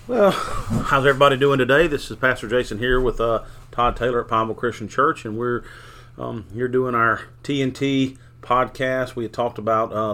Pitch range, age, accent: 100-120 Hz, 40-59, American